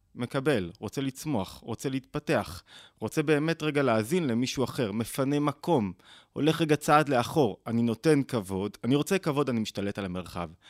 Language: Hebrew